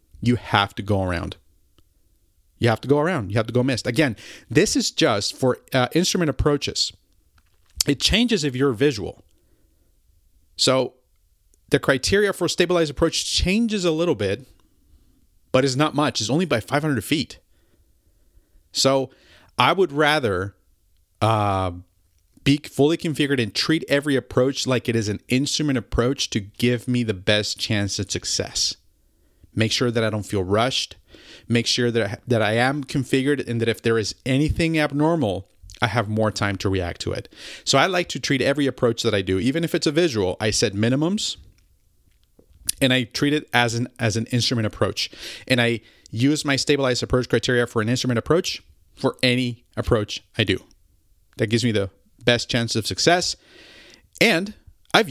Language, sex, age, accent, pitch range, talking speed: English, male, 40-59, American, 95-140 Hz, 170 wpm